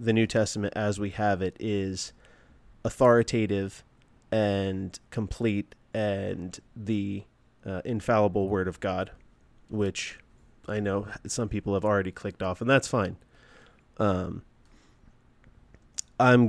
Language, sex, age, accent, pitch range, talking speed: English, male, 30-49, American, 100-120 Hz, 115 wpm